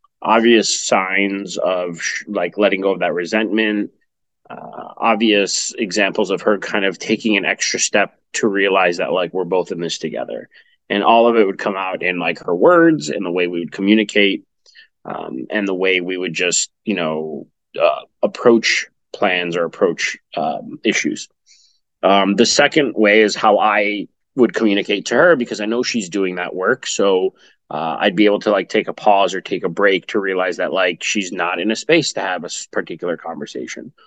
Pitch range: 95-115 Hz